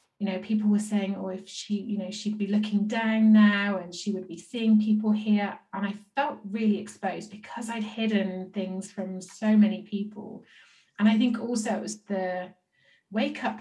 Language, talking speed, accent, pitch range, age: English, 205 wpm, British, 185-210 Hz, 30-49